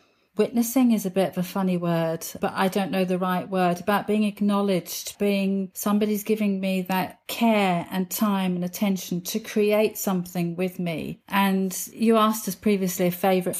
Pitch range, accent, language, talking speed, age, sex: 175-205 Hz, British, English, 175 wpm, 40-59, female